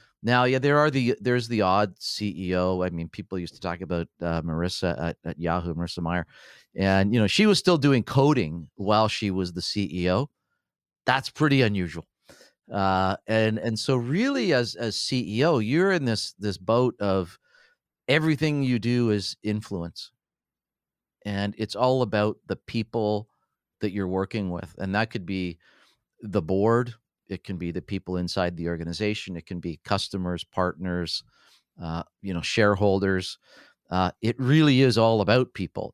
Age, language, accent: 40-59, English, American